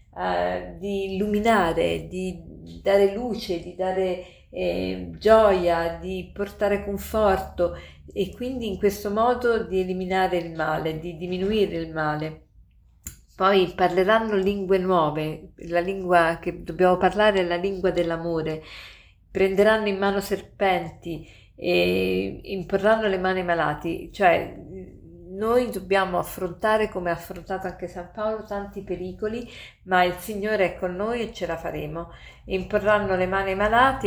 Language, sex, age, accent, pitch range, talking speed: Italian, female, 50-69, native, 170-200 Hz, 130 wpm